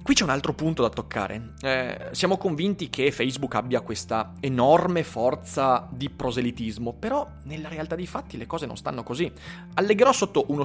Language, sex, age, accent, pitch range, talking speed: Italian, male, 30-49, native, 125-180 Hz, 175 wpm